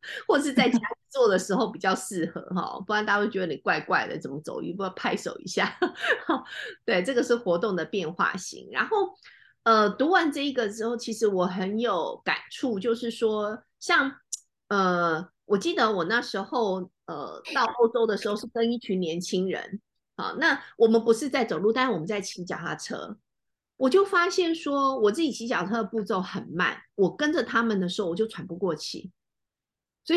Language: Chinese